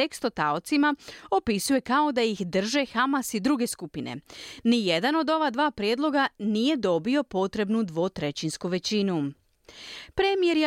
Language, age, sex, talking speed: Croatian, 30-49, female, 125 wpm